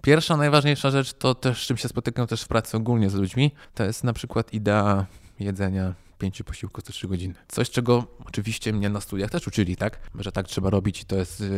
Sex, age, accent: male, 20-39, native